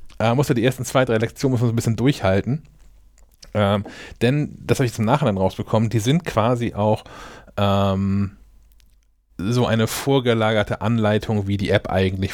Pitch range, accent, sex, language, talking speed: 100-120 Hz, German, male, German, 165 wpm